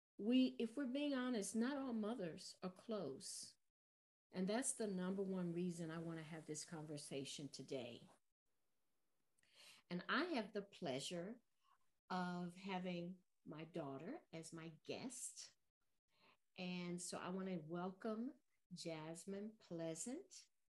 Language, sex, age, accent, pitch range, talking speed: English, female, 50-69, American, 165-215 Hz, 125 wpm